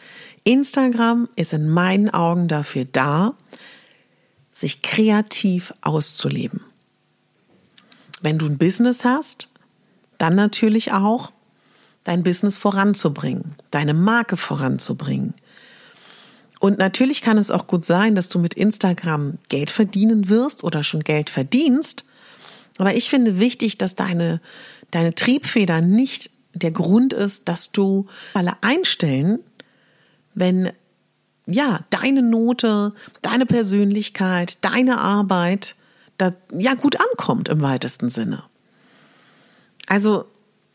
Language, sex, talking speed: German, female, 110 wpm